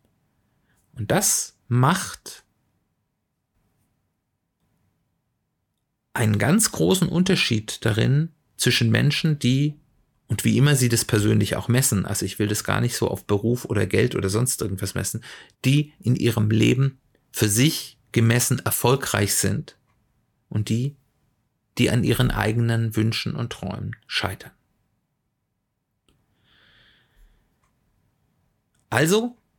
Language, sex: German, male